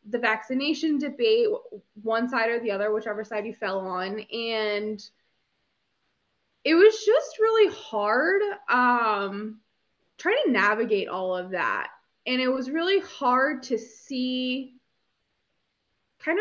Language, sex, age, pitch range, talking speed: English, female, 20-39, 220-315 Hz, 125 wpm